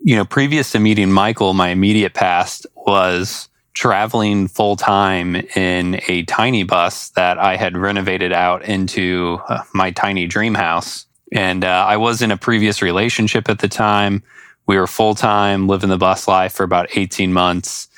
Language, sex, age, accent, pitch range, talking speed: English, male, 20-39, American, 95-105 Hz, 165 wpm